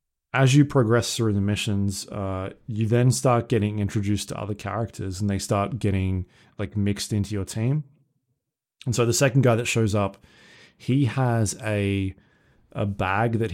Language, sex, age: English, male, 20-39